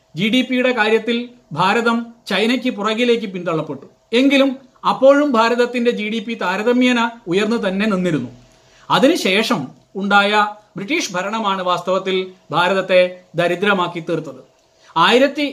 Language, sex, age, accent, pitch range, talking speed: Malayalam, male, 40-59, native, 185-235 Hz, 105 wpm